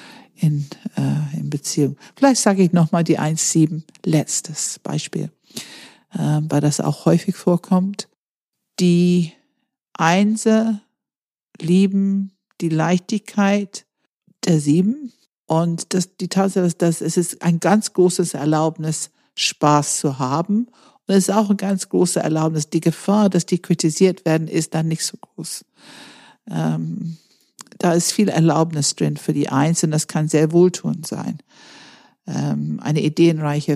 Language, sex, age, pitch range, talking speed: German, female, 50-69, 150-185 Hz, 135 wpm